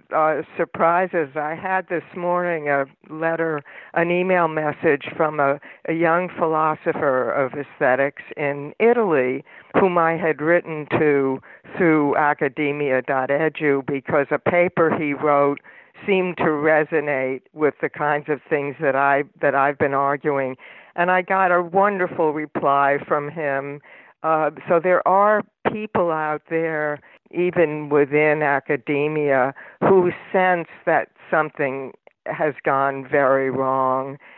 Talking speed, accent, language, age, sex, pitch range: 125 wpm, American, English, 60-79, female, 140-165 Hz